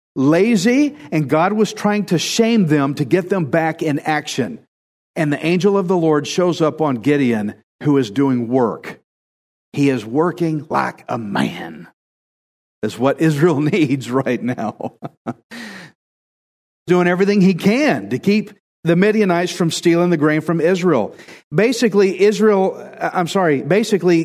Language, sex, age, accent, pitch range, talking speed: English, male, 50-69, American, 140-185 Hz, 150 wpm